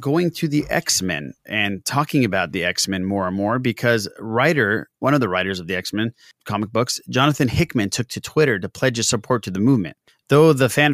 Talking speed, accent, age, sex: 210 wpm, American, 30-49, male